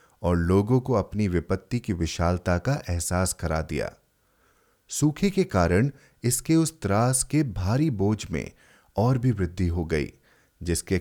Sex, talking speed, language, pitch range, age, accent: male, 145 wpm, Hindi, 90-125 Hz, 30-49, native